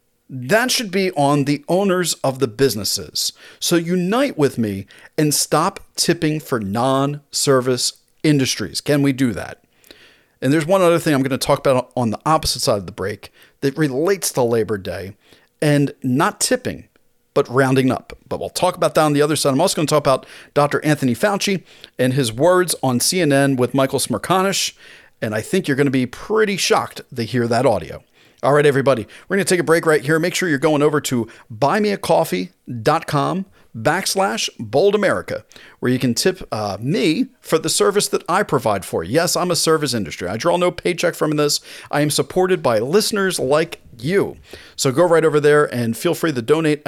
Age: 40-59